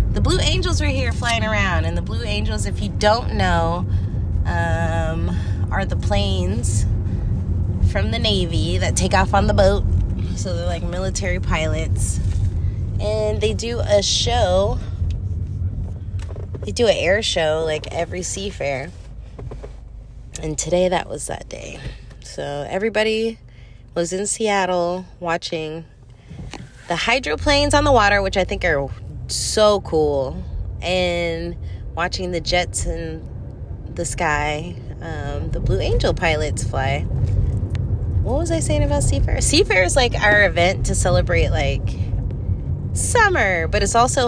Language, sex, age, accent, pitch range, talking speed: English, female, 20-39, American, 95-120 Hz, 135 wpm